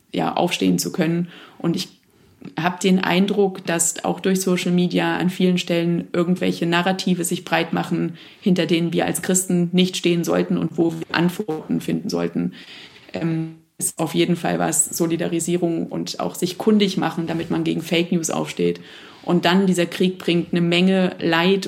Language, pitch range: German, 165-185 Hz